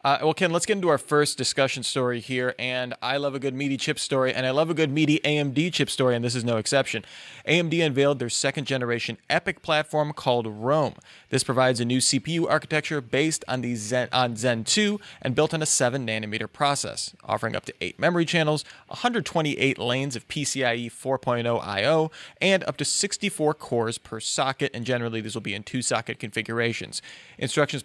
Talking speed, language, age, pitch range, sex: 185 wpm, English, 30-49, 125-150 Hz, male